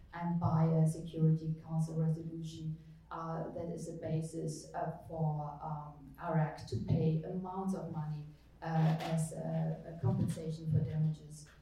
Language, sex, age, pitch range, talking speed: English, female, 30-49, 160-175 Hz, 140 wpm